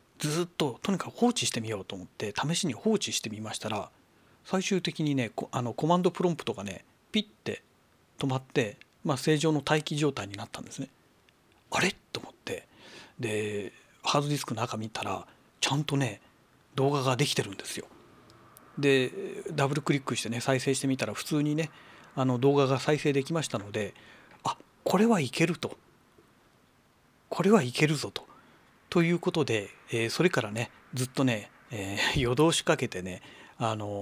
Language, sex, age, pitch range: Japanese, male, 40-59, 115-155 Hz